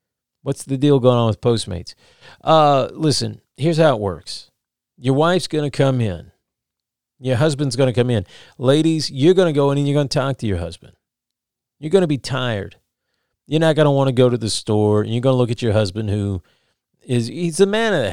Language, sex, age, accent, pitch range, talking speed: English, male, 40-59, American, 120-150 Hz, 205 wpm